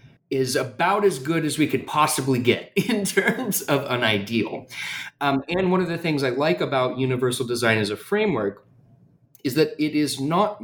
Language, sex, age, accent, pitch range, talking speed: English, male, 30-49, American, 115-145 Hz, 185 wpm